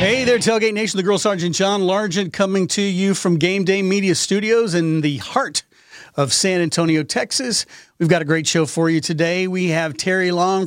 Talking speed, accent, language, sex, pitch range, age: 200 wpm, American, English, male, 155-190 Hz, 40-59